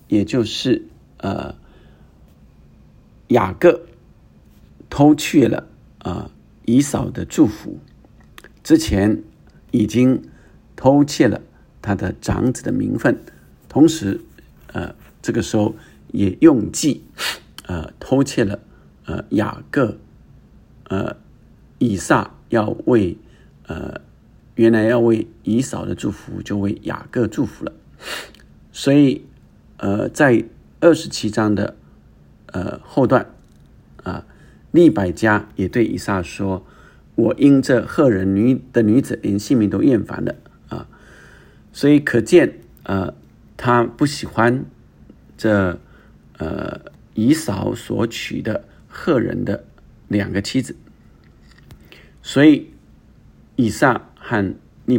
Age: 50-69